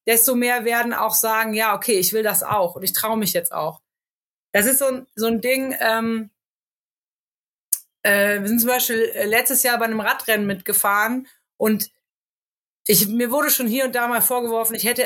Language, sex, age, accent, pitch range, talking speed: German, female, 30-49, German, 215-270 Hz, 190 wpm